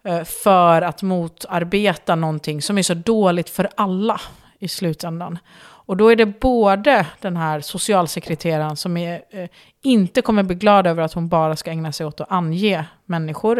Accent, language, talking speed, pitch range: native, Swedish, 165 wpm, 170-210 Hz